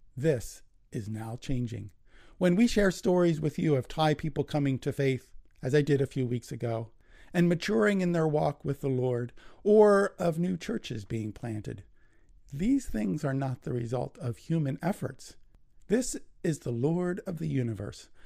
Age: 50-69